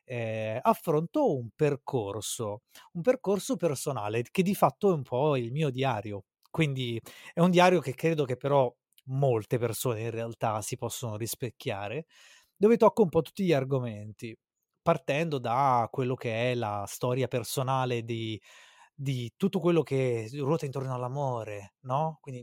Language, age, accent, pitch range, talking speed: Italian, 20-39, native, 120-155 Hz, 150 wpm